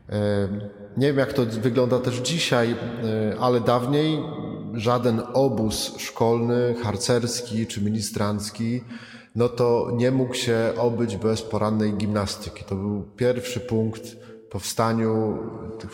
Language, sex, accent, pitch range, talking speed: Polish, male, native, 110-125 Hz, 115 wpm